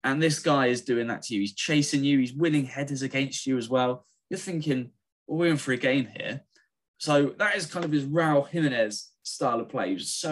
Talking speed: 240 wpm